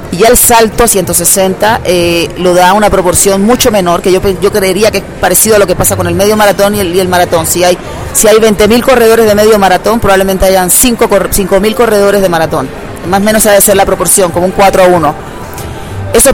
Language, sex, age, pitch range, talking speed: Spanish, female, 30-49, 175-210 Hz, 220 wpm